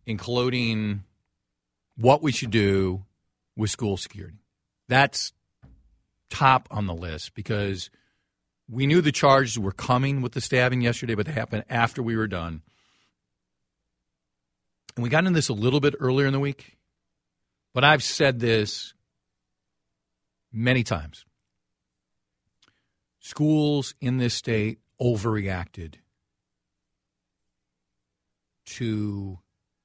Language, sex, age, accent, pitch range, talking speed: English, male, 50-69, American, 95-120 Hz, 110 wpm